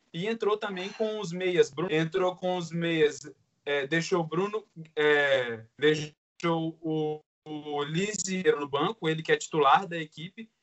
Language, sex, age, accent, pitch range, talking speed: Portuguese, male, 20-39, Brazilian, 155-190 Hz, 140 wpm